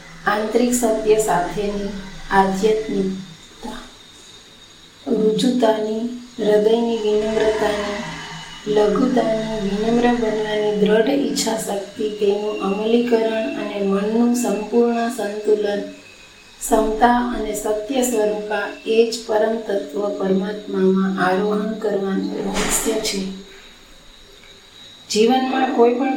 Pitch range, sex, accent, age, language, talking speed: 205-230 Hz, female, native, 30-49, Gujarati, 60 wpm